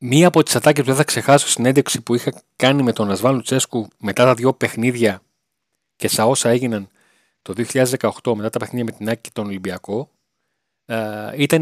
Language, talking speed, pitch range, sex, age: Greek, 190 wpm, 115-155 Hz, male, 30-49